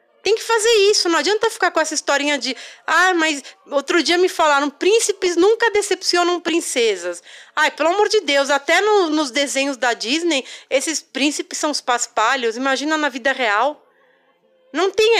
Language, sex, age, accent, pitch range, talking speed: Spanish, female, 30-49, Brazilian, 290-390 Hz, 160 wpm